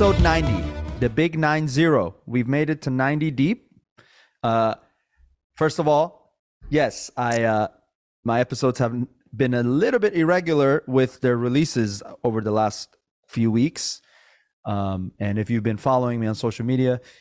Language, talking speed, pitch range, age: English, 155 wpm, 105-135 Hz, 30-49